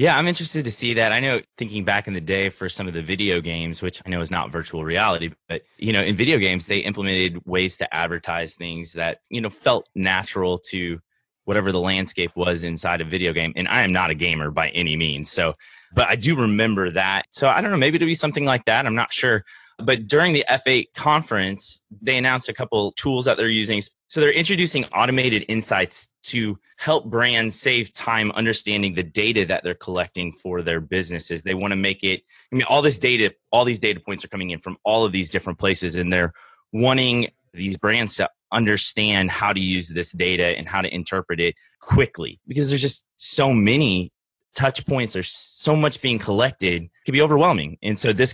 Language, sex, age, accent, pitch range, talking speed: English, male, 20-39, American, 90-115 Hz, 215 wpm